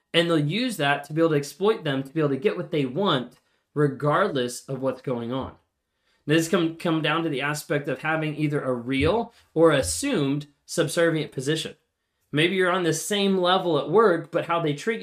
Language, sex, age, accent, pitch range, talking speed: English, male, 20-39, American, 135-170 Hz, 205 wpm